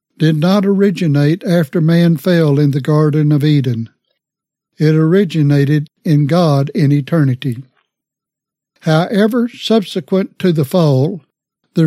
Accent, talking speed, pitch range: American, 115 wpm, 145-180 Hz